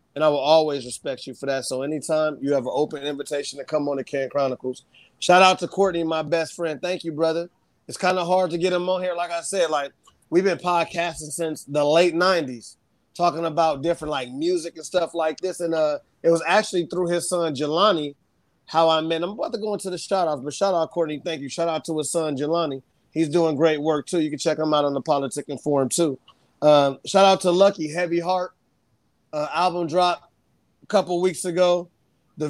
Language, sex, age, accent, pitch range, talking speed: English, male, 30-49, American, 155-185 Hz, 225 wpm